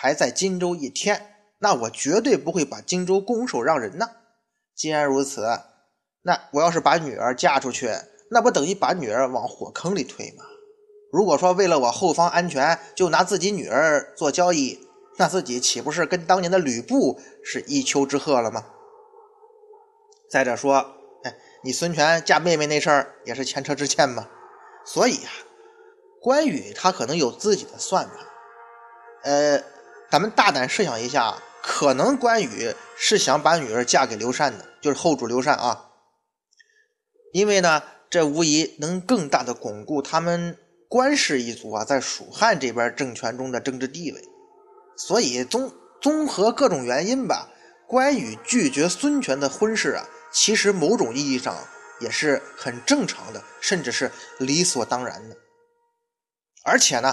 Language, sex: Chinese, male